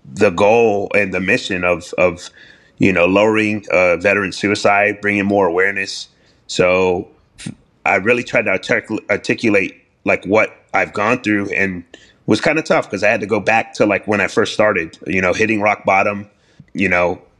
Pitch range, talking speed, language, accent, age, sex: 90-110 Hz, 180 wpm, English, American, 30-49, male